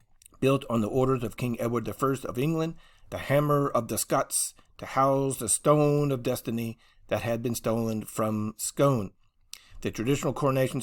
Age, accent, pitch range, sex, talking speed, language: 40-59, American, 110-135 Hz, male, 165 wpm, English